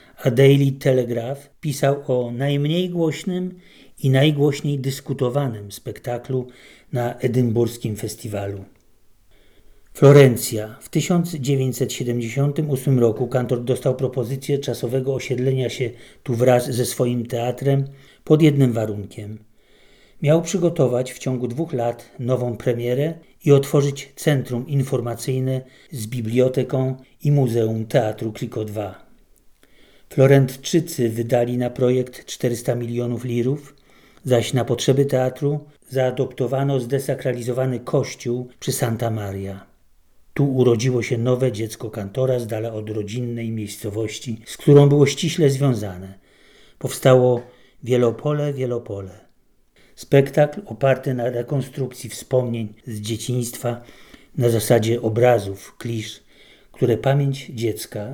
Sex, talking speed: male, 105 wpm